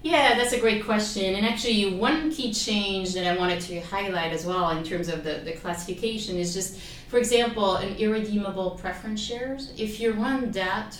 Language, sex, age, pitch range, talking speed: English, female, 30-49, 160-195 Hz, 190 wpm